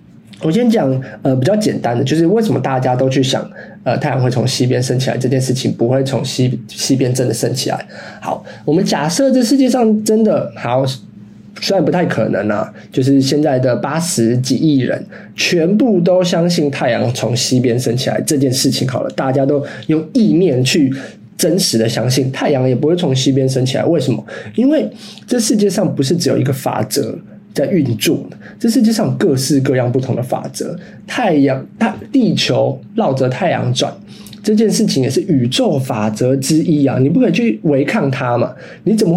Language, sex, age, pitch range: Chinese, male, 20-39, 130-185 Hz